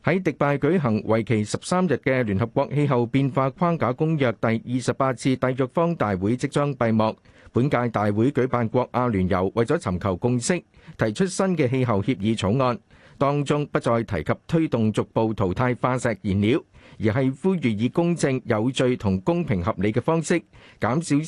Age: 50-69